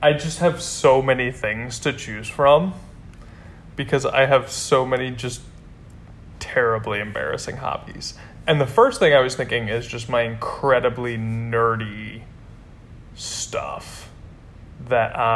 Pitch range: 110-130 Hz